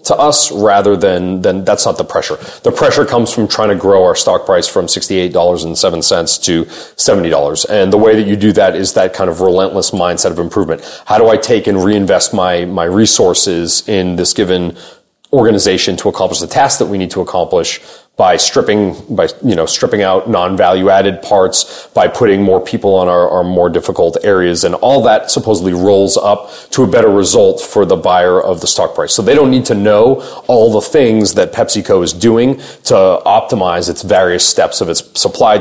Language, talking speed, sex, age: English, 200 wpm, male, 30-49